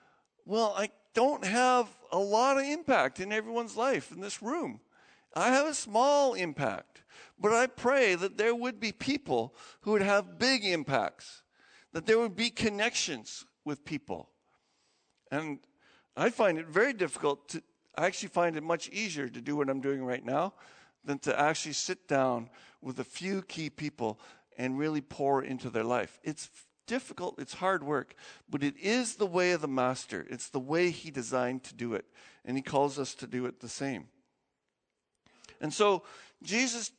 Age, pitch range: 50-69, 140-215 Hz